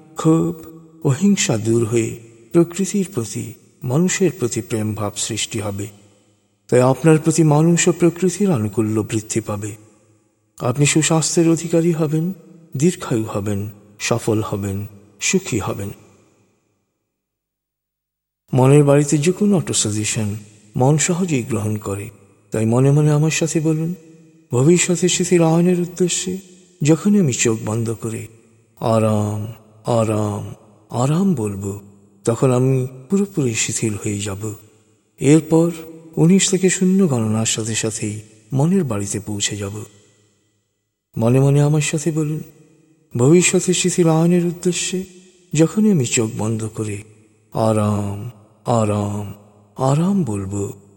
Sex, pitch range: male, 105-165 Hz